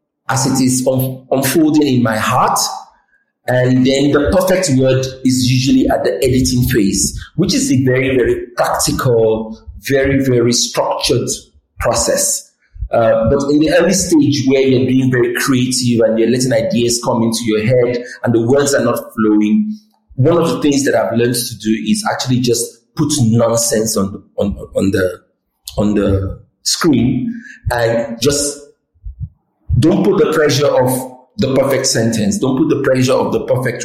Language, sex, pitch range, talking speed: English, male, 120-170 Hz, 165 wpm